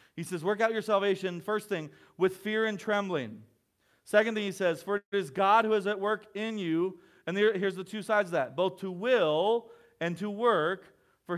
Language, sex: English, male